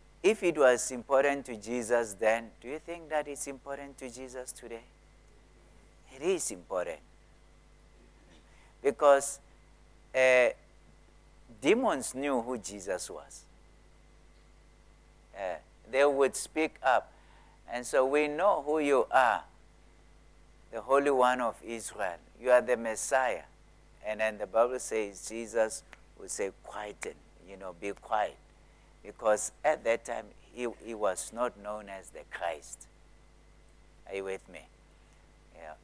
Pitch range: 110-135 Hz